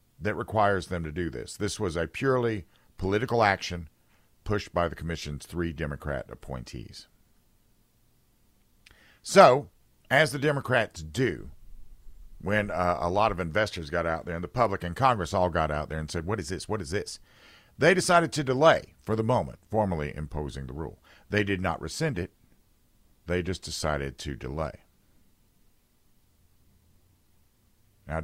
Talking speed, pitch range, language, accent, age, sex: 155 wpm, 80-110 Hz, English, American, 50-69, male